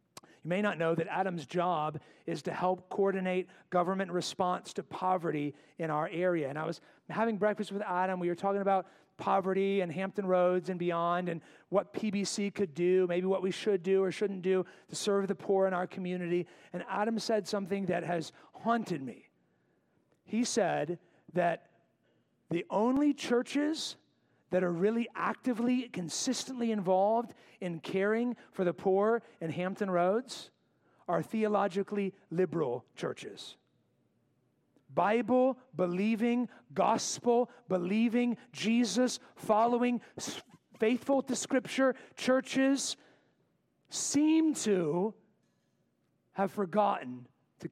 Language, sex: English, male